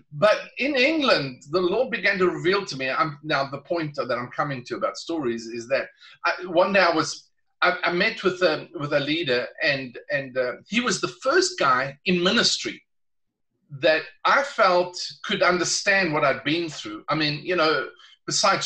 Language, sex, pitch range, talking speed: English, male, 150-200 Hz, 190 wpm